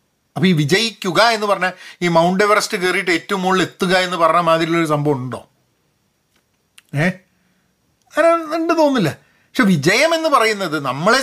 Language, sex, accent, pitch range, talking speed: Malayalam, male, native, 150-220 Hz, 135 wpm